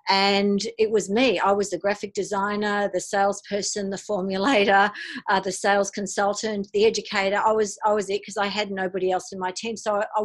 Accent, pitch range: Australian, 180-210 Hz